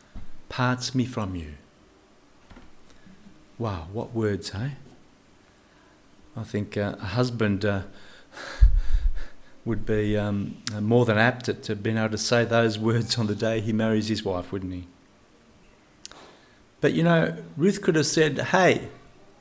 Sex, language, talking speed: male, English, 140 wpm